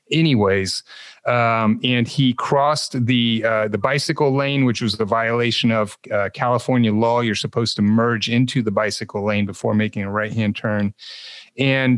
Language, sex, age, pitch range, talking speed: English, male, 30-49, 105-130 Hz, 160 wpm